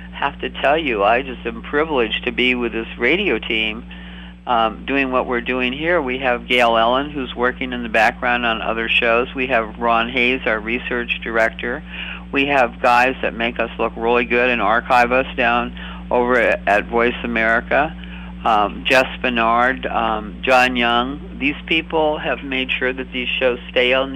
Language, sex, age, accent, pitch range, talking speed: English, male, 50-69, American, 115-155 Hz, 185 wpm